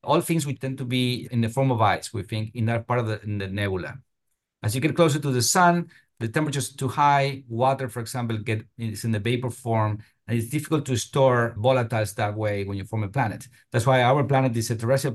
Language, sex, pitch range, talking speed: English, male, 115-140 Hz, 240 wpm